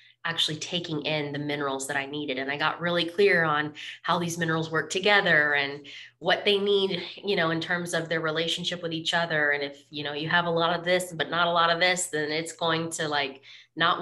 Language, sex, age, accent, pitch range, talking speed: English, female, 20-39, American, 155-200 Hz, 235 wpm